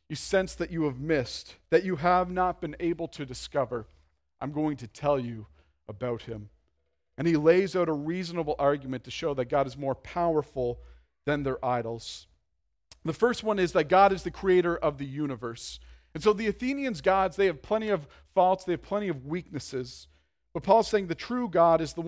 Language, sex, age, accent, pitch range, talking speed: English, male, 40-59, American, 135-180 Hz, 200 wpm